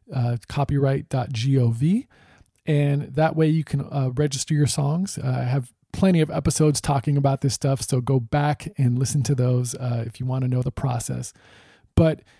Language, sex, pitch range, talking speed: English, male, 130-155 Hz, 180 wpm